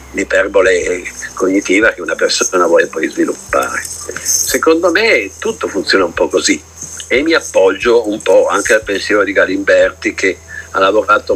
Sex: male